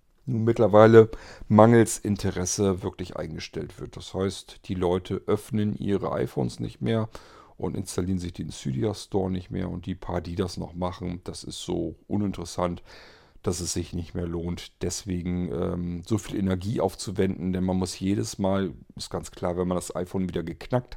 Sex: male